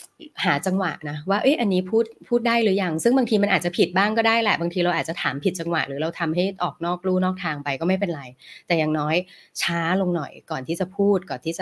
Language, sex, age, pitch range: Thai, female, 20-39, 155-195 Hz